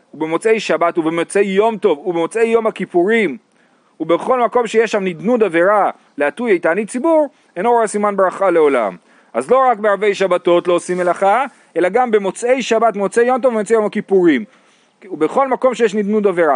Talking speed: 165 wpm